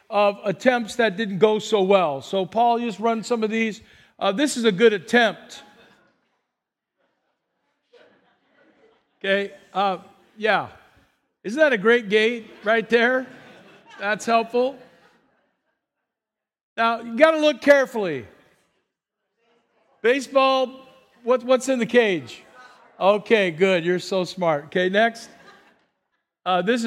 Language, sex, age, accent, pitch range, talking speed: English, male, 50-69, American, 200-255 Hz, 120 wpm